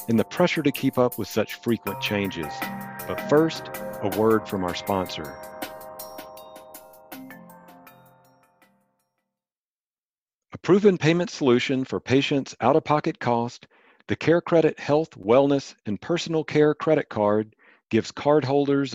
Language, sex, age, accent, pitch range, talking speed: English, male, 40-59, American, 110-145 Hz, 115 wpm